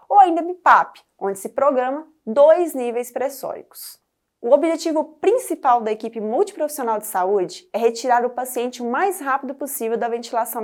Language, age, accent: Portuguese, 20-39, Brazilian